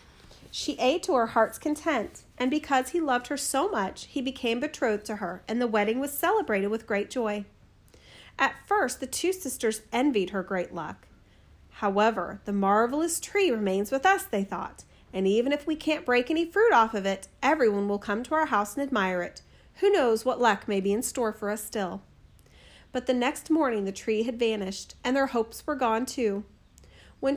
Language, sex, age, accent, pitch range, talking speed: English, female, 40-59, American, 205-285 Hz, 195 wpm